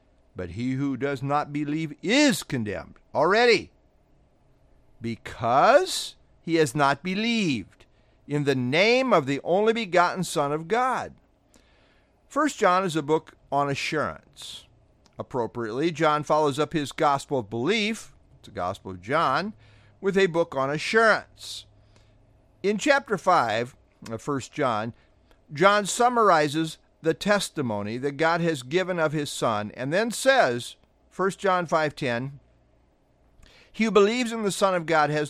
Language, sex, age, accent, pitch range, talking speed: English, male, 50-69, American, 120-185 Hz, 140 wpm